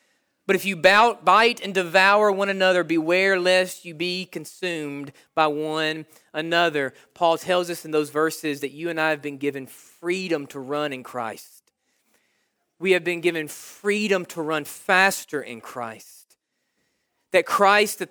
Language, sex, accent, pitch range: English, male, American, 155-205 Hz